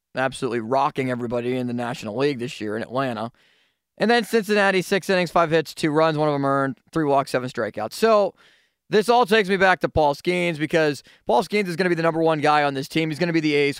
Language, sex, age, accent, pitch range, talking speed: English, male, 20-39, American, 130-185 Hz, 250 wpm